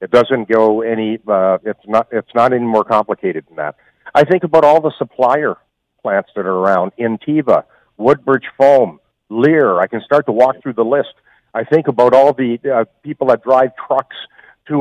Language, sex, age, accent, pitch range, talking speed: English, male, 50-69, American, 120-155 Hz, 190 wpm